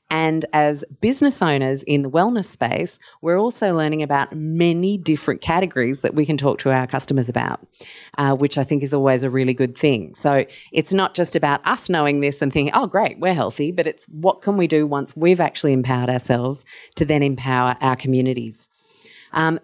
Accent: Australian